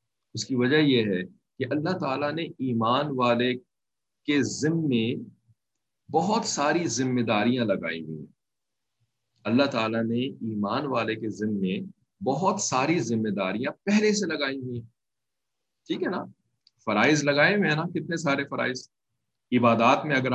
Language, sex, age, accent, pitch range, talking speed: English, male, 50-69, Indian, 115-145 Hz, 115 wpm